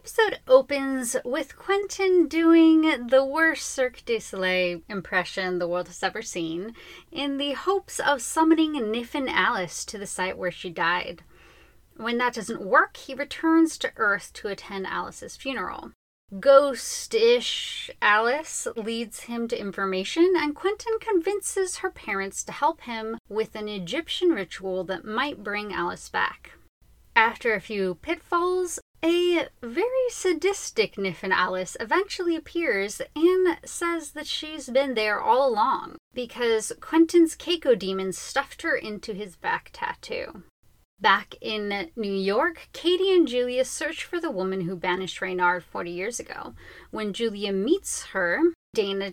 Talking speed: 140 wpm